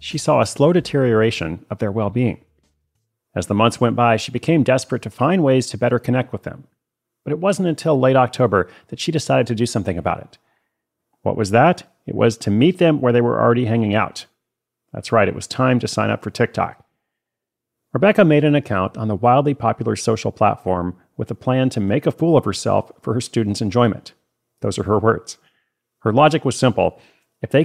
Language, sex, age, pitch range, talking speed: English, male, 40-59, 110-135 Hz, 205 wpm